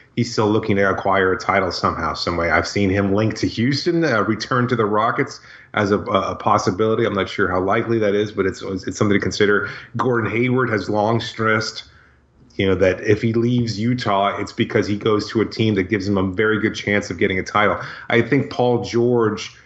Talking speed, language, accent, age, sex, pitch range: 220 wpm, English, American, 30-49, male, 105-120 Hz